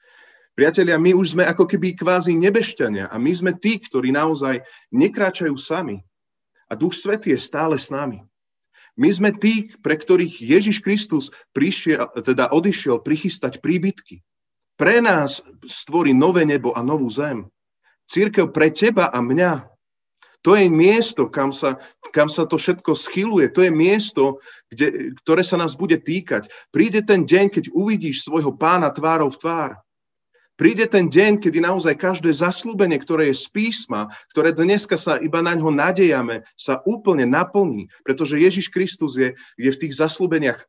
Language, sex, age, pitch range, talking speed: Slovak, male, 30-49, 140-190 Hz, 150 wpm